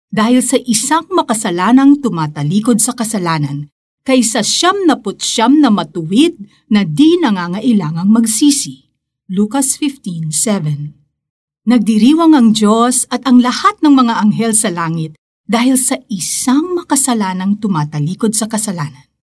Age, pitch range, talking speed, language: 50-69, 165-245 Hz, 115 wpm, Filipino